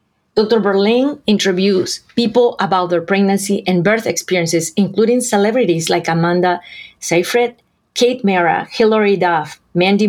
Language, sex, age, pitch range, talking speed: English, female, 40-59, 170-215 Hz, 120 wpm